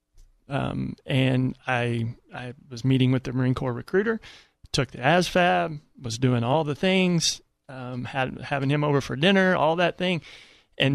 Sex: male